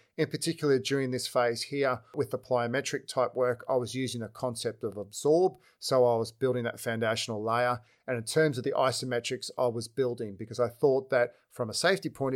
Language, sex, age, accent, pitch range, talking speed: English, male, 40-59, Australian, 120-140 Hz, 205 wpm